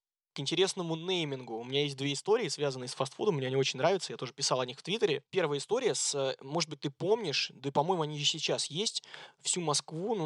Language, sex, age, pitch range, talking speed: Russian, male, 20-39, 135-170 Hz, 230 wpm